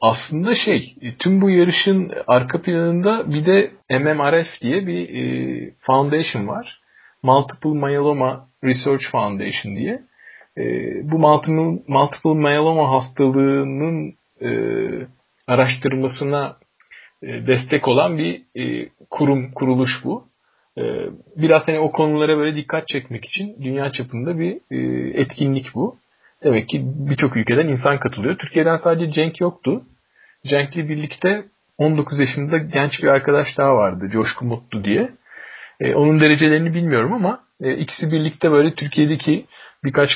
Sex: male